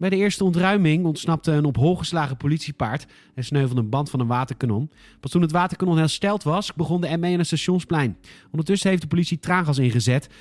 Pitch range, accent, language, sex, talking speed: 130-180 Hz, Dutch, Dutch, male, 200 wpm